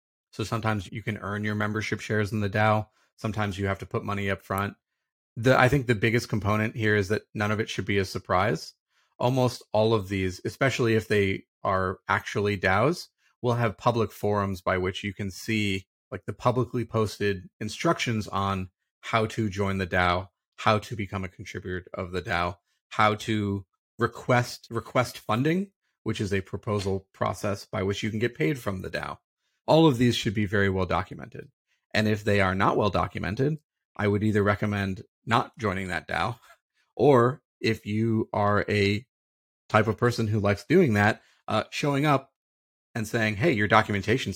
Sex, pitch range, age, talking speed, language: male, 100-115 Hz, 30-49, 180 wpm, English